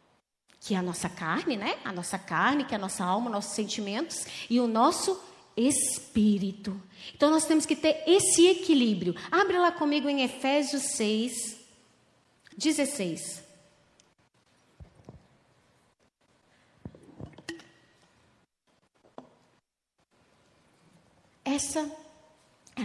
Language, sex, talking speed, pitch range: Portuguese, female, 95 wpm, 220-310 Hz